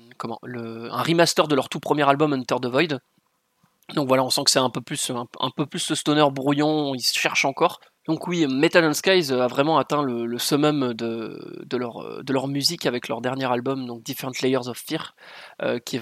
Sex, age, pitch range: male, 20-39, 125-150 Hz